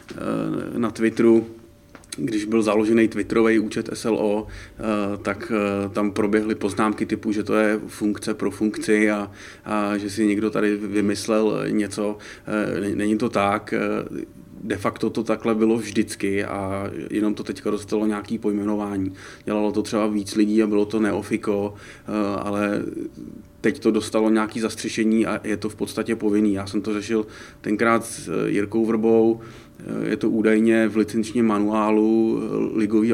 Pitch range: 100-110 Hz